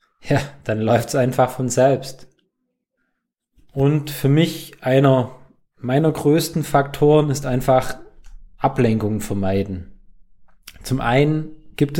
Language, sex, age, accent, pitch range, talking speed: German, male, 20-39, German, 125-150 Hz, 105 wpm